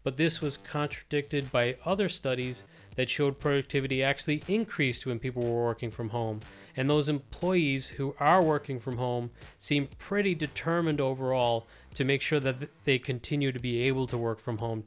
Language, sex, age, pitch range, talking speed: English, male, 30-49, 125-150 Hz, 175 wpm